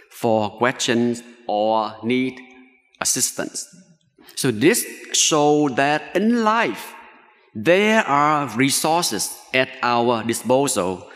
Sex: male